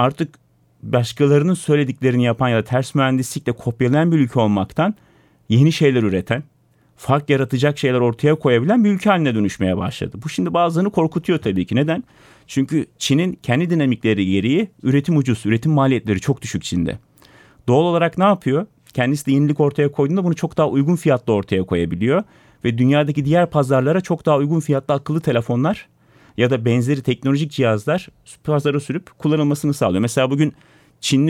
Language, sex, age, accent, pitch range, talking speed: Turkish, male, 40-59, native, 125-155 Hz, 155 wpm